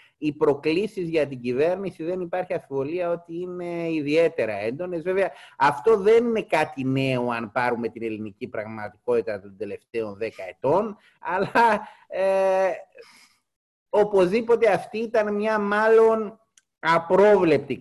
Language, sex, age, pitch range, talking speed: Greek, male, 30-49, 145-215 Hz, 115 wpm